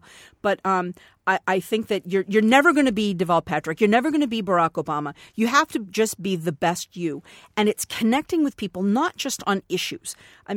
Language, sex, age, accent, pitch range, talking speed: English, female, 50-69, American, 175-250 Hz, 220 wpm